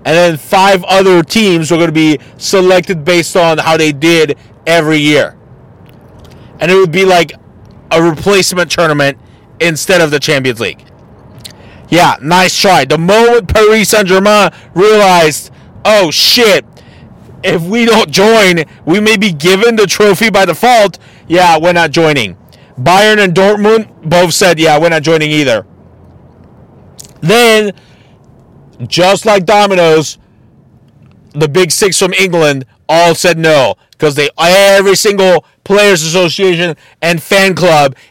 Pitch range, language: 155-195 Hz, English